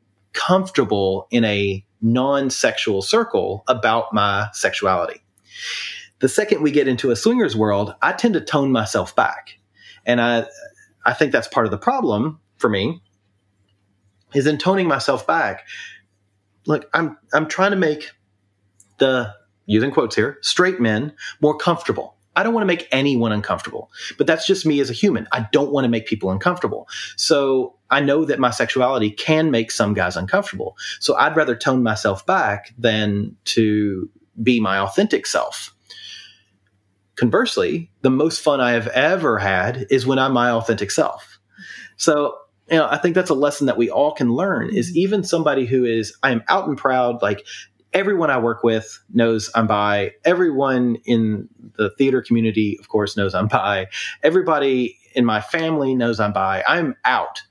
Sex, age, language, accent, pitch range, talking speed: male, 30-49, English, American, 105-150 Hz, 165 wpm